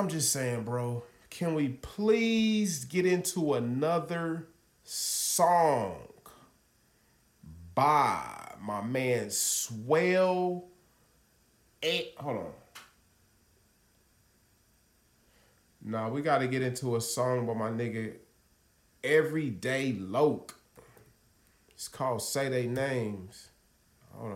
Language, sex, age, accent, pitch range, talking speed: English, male, 30-49, American, 110-165 Hz, 90 wpm